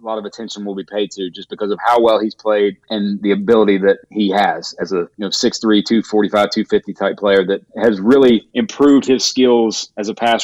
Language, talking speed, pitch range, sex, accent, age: English, 225 wpm, 100-120 Hz, male, American, 30-49